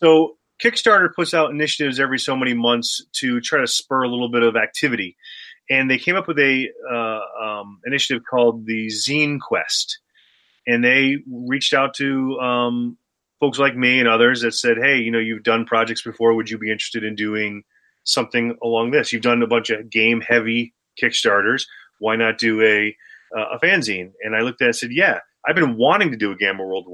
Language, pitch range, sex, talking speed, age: English, 115-130 Hz, male, 205 wpm, 30-49